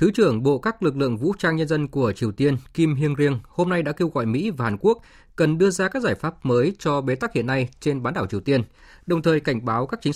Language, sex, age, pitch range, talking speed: Vietnamese, male, 20-39, 120-160 Hz, 285 wpm